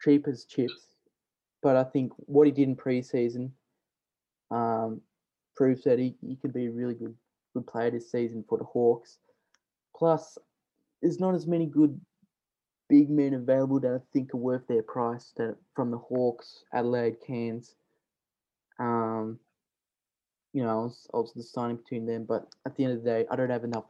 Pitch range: 115-135 Hz